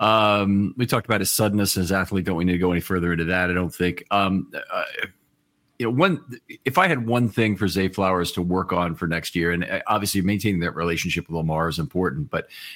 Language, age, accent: English, 40-59, American